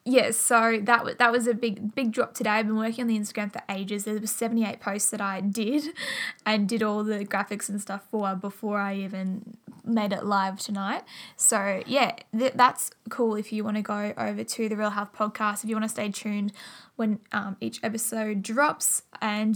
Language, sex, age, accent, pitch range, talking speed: English, female, 10-29, Australian, 205-230 Hz, 215 wpm